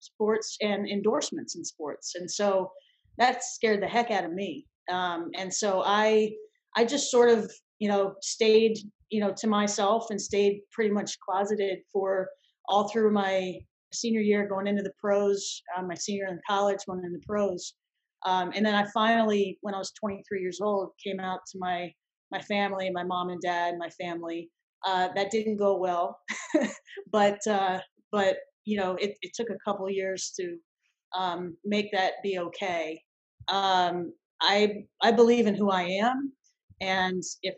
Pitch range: 185-210 Hz